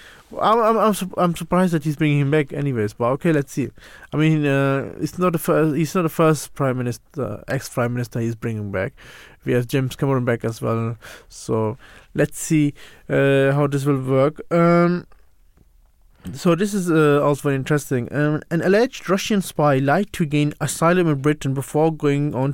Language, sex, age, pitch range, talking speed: English, male, 20-39, 135-170 Hz, 190 wpm